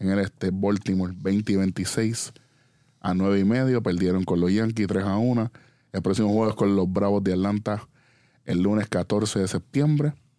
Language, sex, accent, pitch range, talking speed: Spanish, male, American, 95-120 Hz, 185 wpm